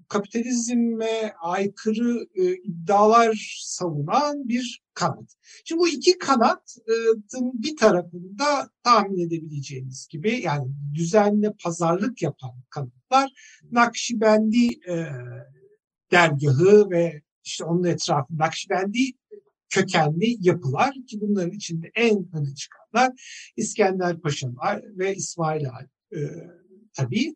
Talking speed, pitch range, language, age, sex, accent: 95 wpm, 160-235 Hz, Turkish, 60-79, male, native